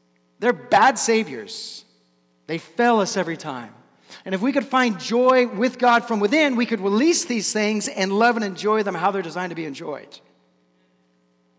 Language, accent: English, American